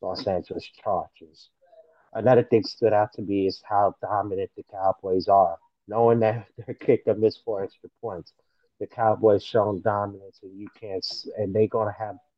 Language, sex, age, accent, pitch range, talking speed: English, male, 30-49, American, 100-125 Hz, 170 wpm